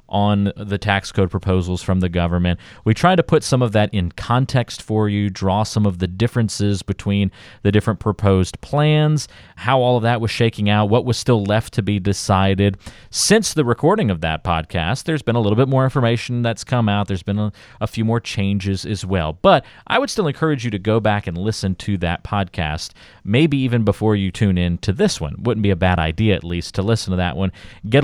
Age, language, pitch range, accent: 30-49, English, 90-120 Hz, American